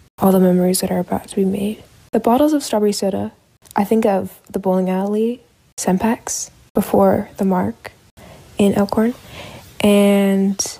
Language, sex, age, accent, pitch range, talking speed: English, female, 20-39, American, 180-205 Hz, 150 wpm